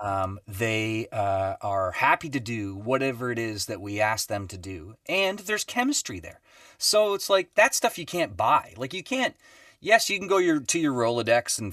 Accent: American